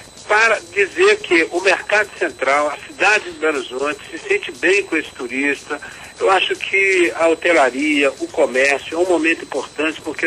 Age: 60-79